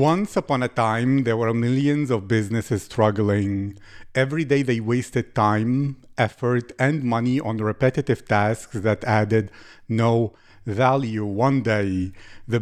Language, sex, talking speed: English, male, 135 wpm